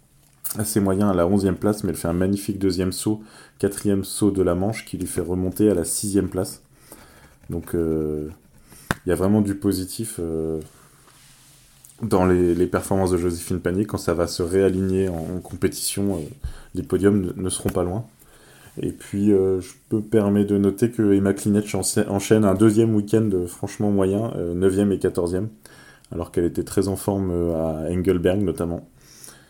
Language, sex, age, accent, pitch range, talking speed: French, male, 20-39, French, 90-105 Hz, 180 wpm